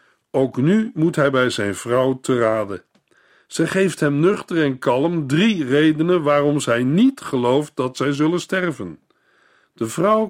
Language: Dutch